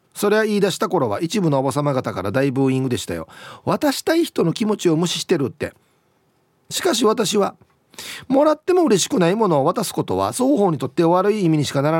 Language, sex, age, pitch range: Japanese, male, 40-59, 115-175 Hz